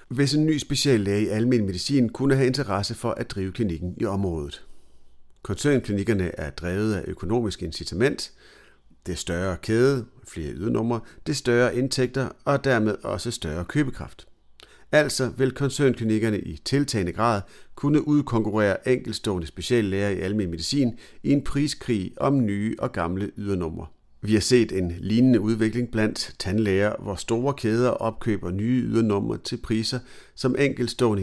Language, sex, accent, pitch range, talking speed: Danish, male, native, 95-125 Hz, 140 wpm